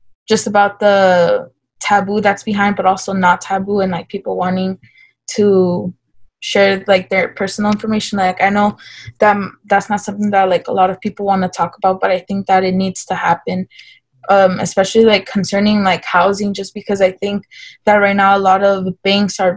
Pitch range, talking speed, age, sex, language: 190-215 Hz, 195 wpm, 20-39, female, English